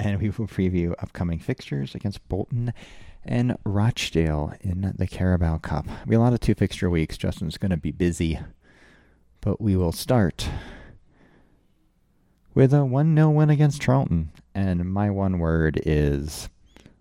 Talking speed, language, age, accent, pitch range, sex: 150 wpm, English, 30-49, American, 80-105 Hz, male